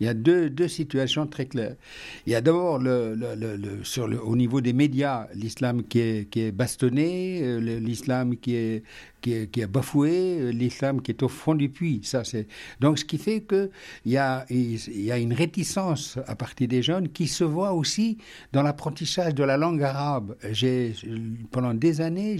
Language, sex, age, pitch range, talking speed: French, male, 60-79, 120-155 Hz, 200 wpm